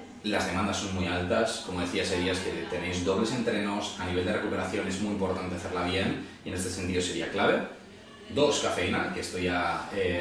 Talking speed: 195 wpm